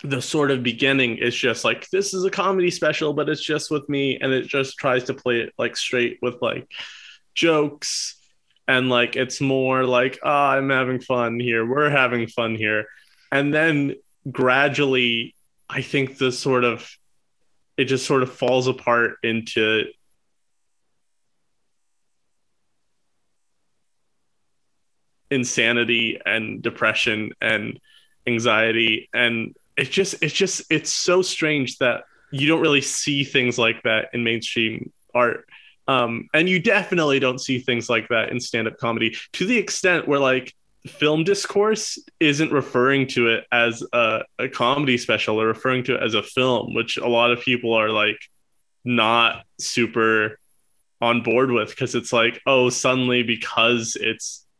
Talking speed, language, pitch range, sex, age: 150 wpm, English, 115-140 Hz, male, 20-39